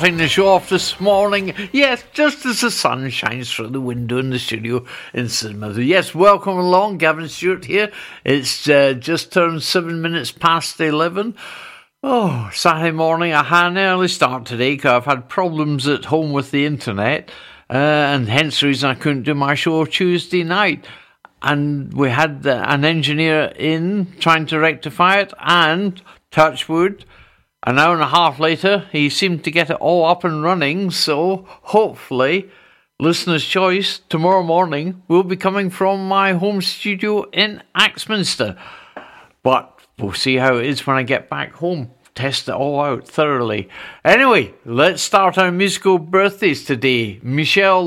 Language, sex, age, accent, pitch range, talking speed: English, male, 60-79, British, 140-185 Hz, 160 wpm